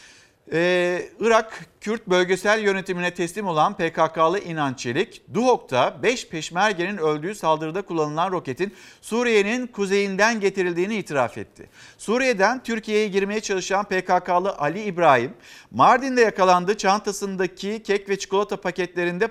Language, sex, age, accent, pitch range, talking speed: Turkish, male, 50-69, native, 160-205 Hz, 110 wpm